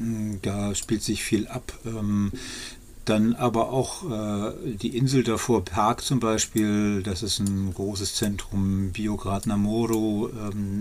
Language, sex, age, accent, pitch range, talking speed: German, male, 50-69, German, 105-120 Hz, 135 wpm